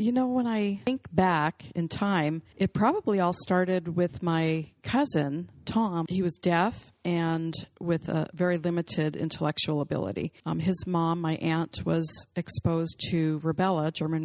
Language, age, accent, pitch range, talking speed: English, 40-59, American, 160-190 Hz, 150 wpm